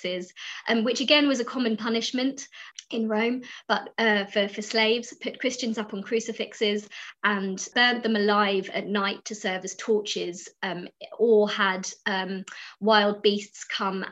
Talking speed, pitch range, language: 155 wpm, 195-220 Hz, English